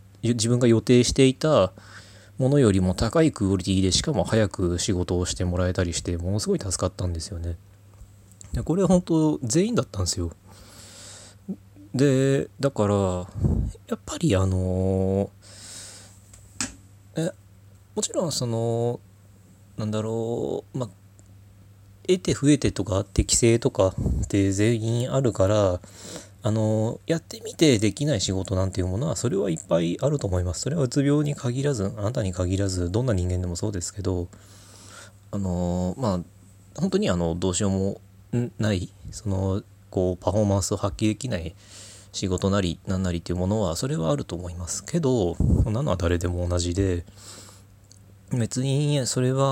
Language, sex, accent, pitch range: Japanese, male, native, 95-115 Hz